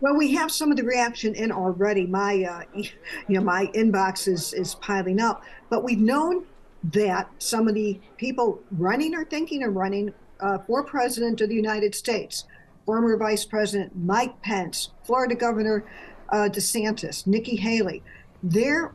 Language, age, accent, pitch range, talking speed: English, 50-69, American, 195-240 Hz, 160 wpm